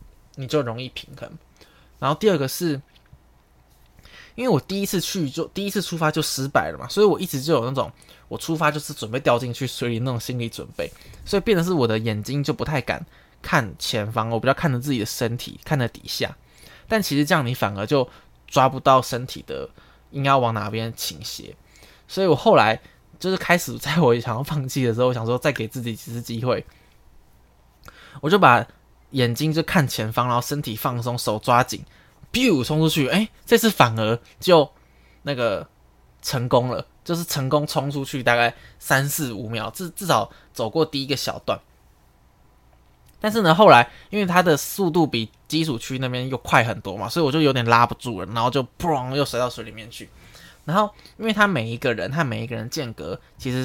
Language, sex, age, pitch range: Chinese, male, 20-39, 115-155 Hz